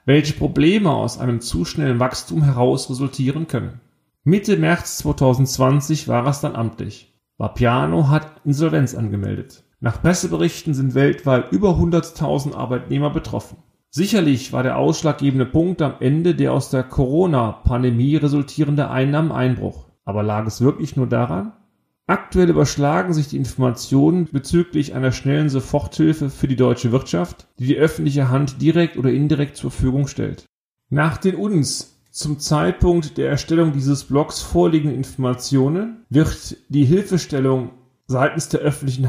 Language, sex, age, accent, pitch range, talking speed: German, male, 40-59, German, 130-160 Hz, 135 wpm